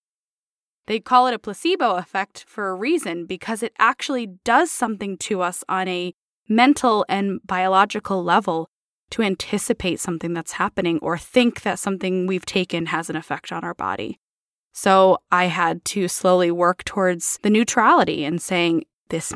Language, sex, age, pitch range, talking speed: English, female, 20-39, 180-230 Hz, 160 wpm